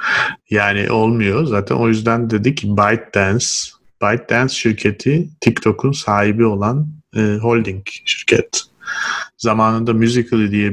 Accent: native